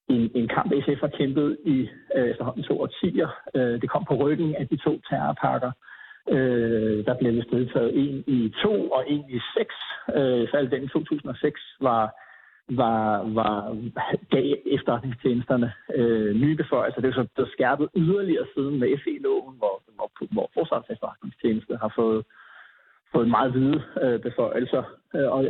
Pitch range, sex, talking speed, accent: 120-150 Hz, male, 160 wpm, native